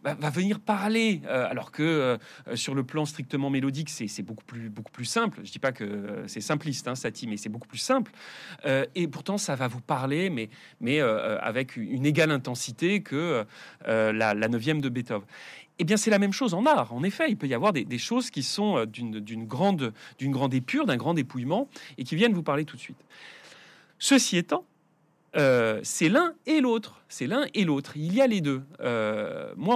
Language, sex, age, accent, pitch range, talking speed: French, male, 30-49, French, 125-185 Hz, 205 wpm